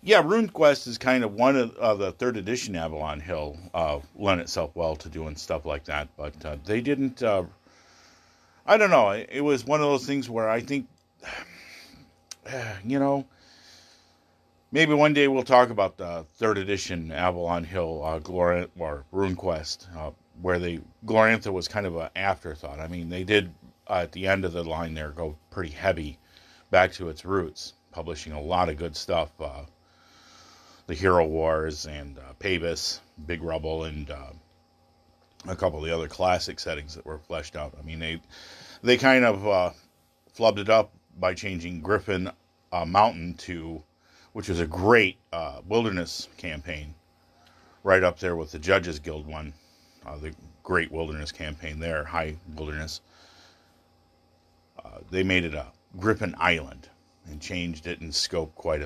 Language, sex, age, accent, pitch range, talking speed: English, male, 50-69, American, 80-95 Hz, 165 wpm